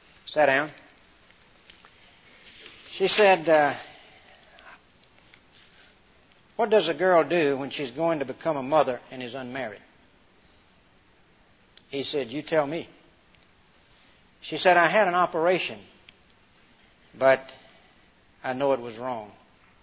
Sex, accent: male, American